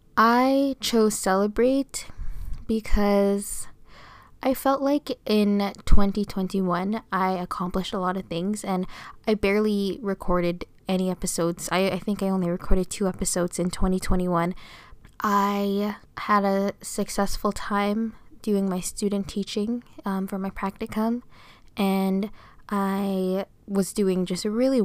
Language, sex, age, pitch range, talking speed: English, female, 10-29, 185-210 Hz, 120 wpm